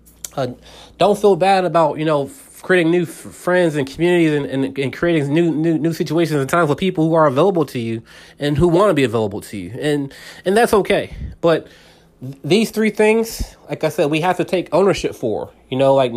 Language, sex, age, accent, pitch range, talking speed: English, male, 30-49, American, 135-180 Hz, 220 wpm